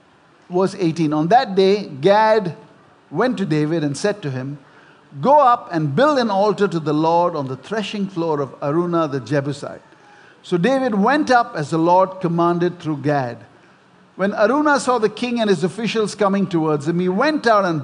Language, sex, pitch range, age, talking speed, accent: English, male, 160-240 Hz, 50-69, 185 wpm, Indian